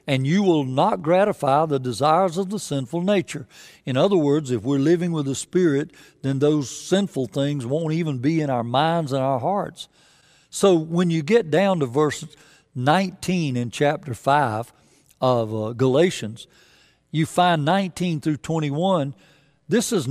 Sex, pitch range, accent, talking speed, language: male, 130-175 Hz, American, 160 wpm, English